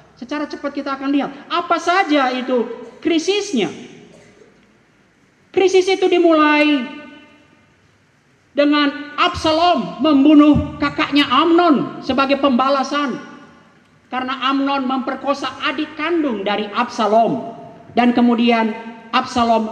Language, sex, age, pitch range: Indonesian, male, 40-59, 235-310 Hz